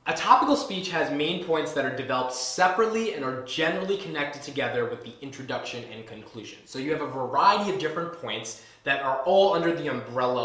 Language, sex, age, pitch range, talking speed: English, male, 20-39, 125-175 Hz, 195 wpm